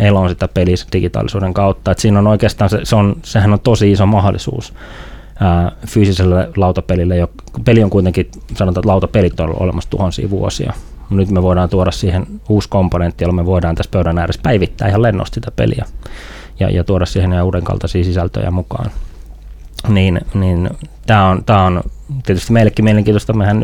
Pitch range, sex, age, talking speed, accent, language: 90-100 Hz, male, 30-49, 165 wpm, native, Finnish